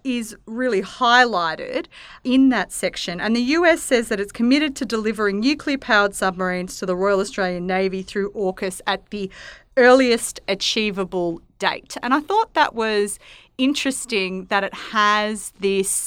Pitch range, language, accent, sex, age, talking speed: 190-255 Hz, English, Australian, female, 30-49, 145 wpm